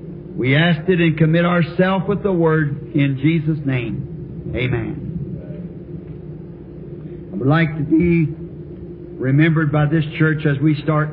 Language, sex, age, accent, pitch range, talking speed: English, male, 60-79, American, 150-170 Hz, 135 wpm